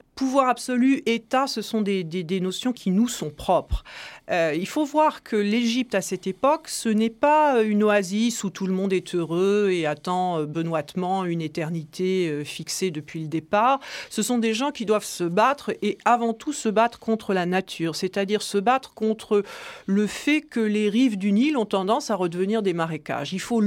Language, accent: French, French